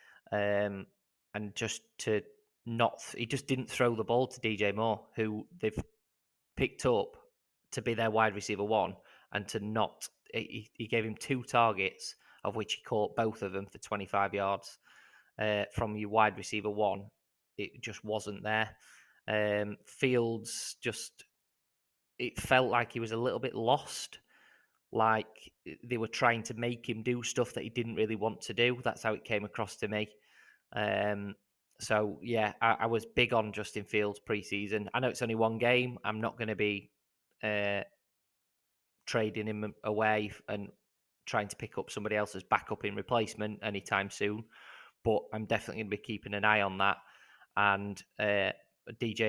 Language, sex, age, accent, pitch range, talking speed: English, male, 20-39, British, 105-115 Hz, 170 wpm